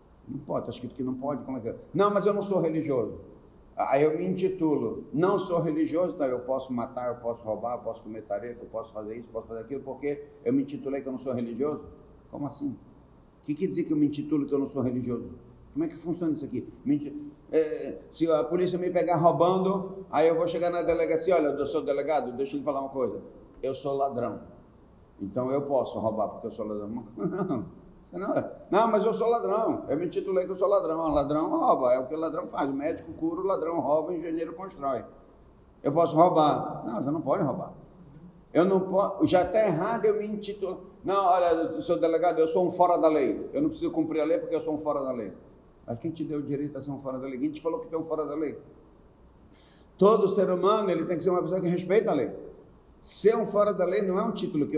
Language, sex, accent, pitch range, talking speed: Portuguese, male, Brazilian, 140-185 Hz, 240 wpm